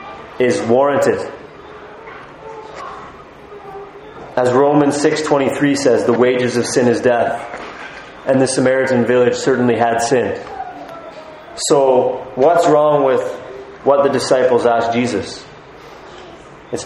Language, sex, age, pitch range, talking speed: English, male, 30-49, 125-155 Hz, 105 wpm